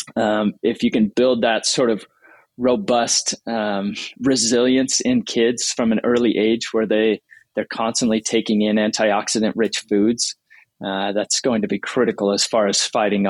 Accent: American